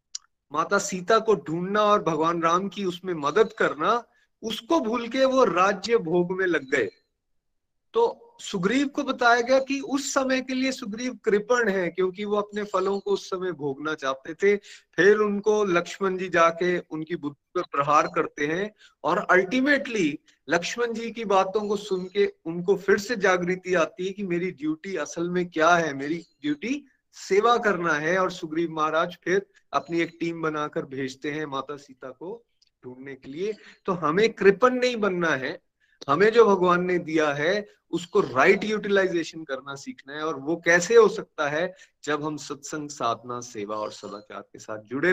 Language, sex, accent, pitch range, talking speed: Hindi, male, native, 160-215 Hz, 175 wpm